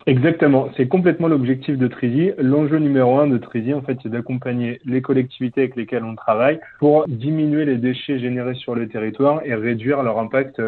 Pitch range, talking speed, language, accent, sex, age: 115-140 Hz, 185 wpm, French, French, male, 20-39